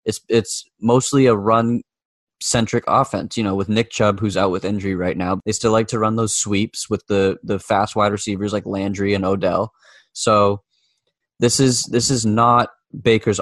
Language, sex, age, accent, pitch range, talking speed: English, male, 10-29, American, 100-125 Hz, 190 wpm